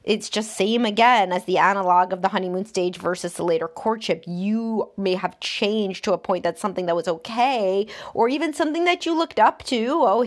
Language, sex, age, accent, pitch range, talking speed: English, female, 30-49, American, 185-235 Hz, 210 wpm